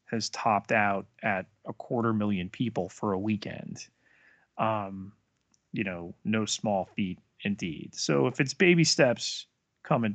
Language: English